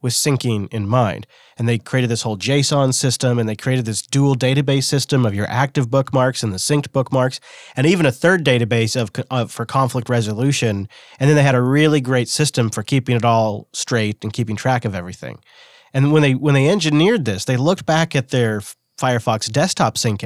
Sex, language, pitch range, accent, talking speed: male, English, 115-140 Hz, American, 205 wpm